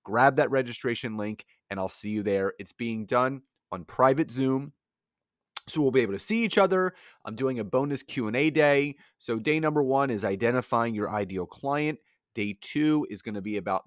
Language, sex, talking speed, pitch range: English, male, 205 wpm, 105-155 Hz